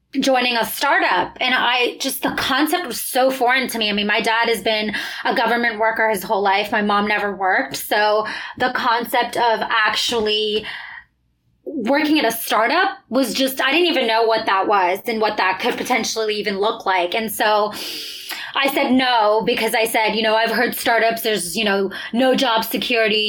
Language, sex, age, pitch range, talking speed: English, female, 20-39, 220-260 Hz, 190 wpm